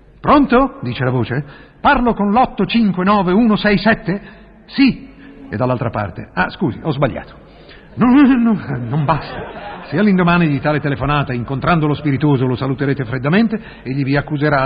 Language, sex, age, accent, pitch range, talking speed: Italian, male, 50-69, native, 140-195 Hz, 135 wpm